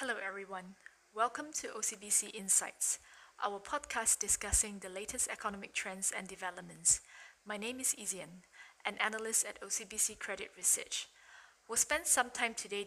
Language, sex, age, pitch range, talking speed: English, female, 20-39, 190-225 Hz, 140 wpm